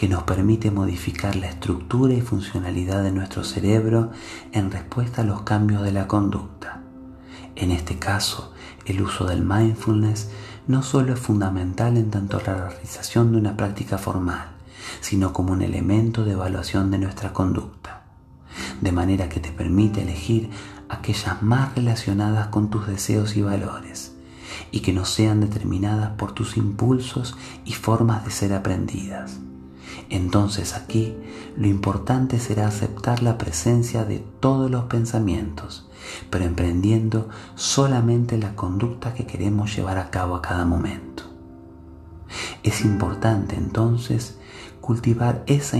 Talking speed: 135 wpm